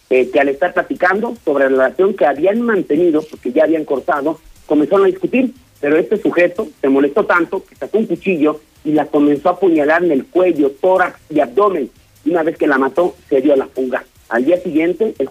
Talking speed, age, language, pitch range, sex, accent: 210 wpm, 50-69, Spanish, 145-195 Hz, male, Mexican